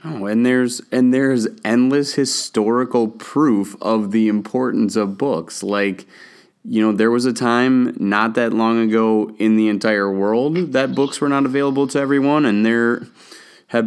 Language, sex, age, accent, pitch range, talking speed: English, male, 20-39, American, 100-120 Hz, 170 wpm